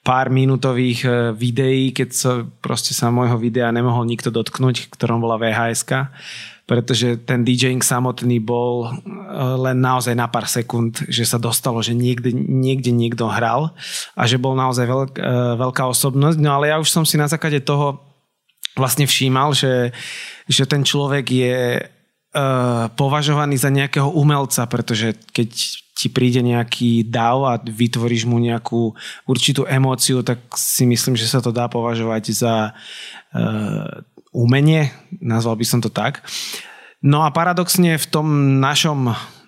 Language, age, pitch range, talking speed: Slovak, 20-39, 120-145 Hz, 140 wpm